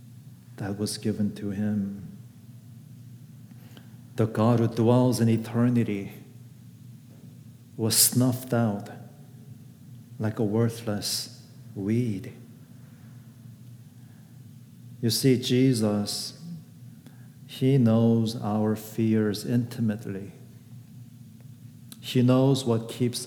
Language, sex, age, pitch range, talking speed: English, male, 50-69, 110-125 Hz, 75 wpm